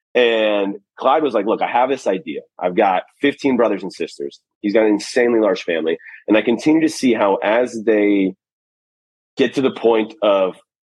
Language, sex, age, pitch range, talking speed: English, male, 30-49, 100-135 Hz, 185 wpm